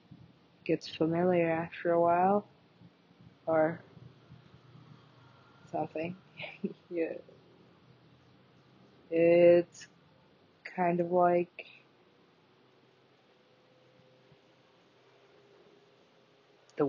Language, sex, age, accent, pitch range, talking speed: English, female, 20-39, American, 165-220 Hz, 45 wpm